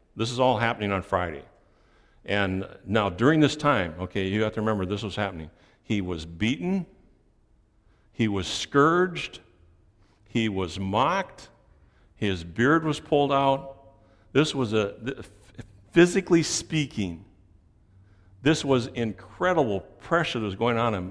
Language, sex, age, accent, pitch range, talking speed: English, male, 60-79, American, 95-125 Hz, 135 wpm